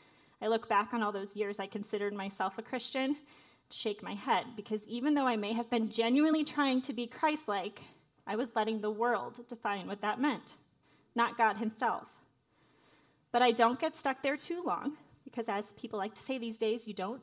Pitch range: 210-250 Hz